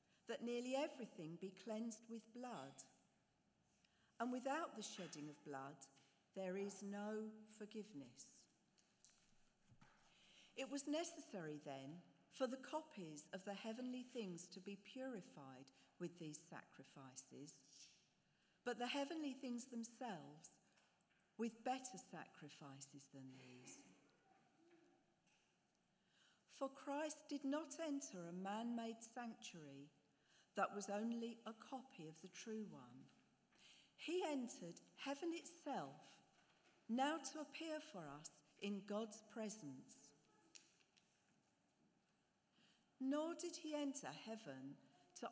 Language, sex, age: English, female, 50-69